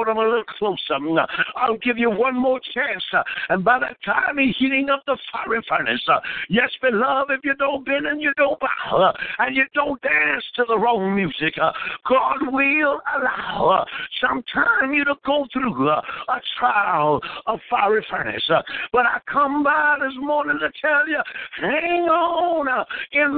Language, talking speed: English, 165 wpm